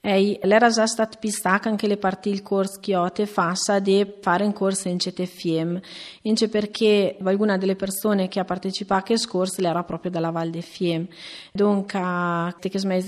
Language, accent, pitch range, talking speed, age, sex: Italian, native, 185-205 Hz, 170 wpm, 30-49, female